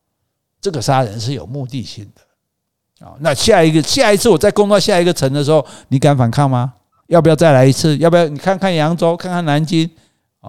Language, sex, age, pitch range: Chinese, male, 50-69, 120-175 Hz